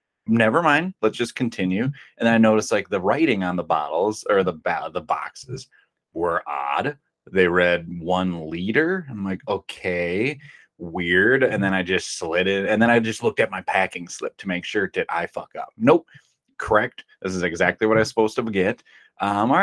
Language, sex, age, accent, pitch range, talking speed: English, male, 30-49, American, 95-120 Hz, 200 wpm